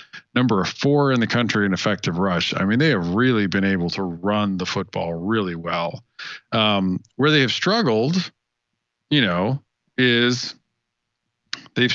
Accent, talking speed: American, 150 wpm